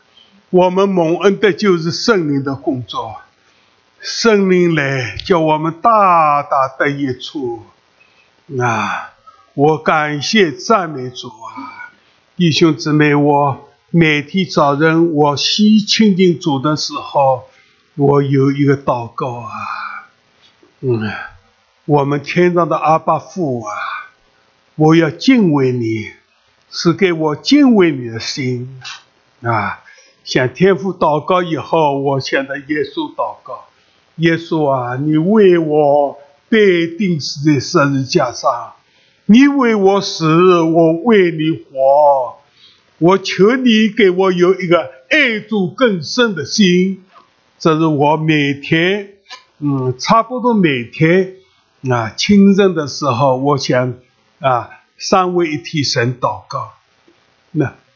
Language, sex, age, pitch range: English, male, 60-79, 140-190 Hz